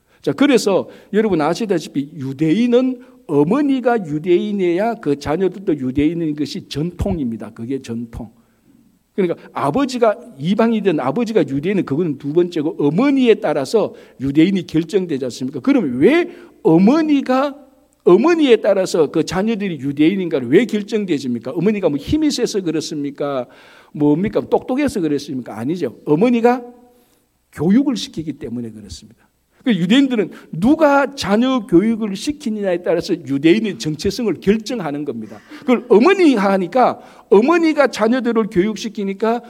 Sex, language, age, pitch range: male, Korean, 60-79, 155-255 Hz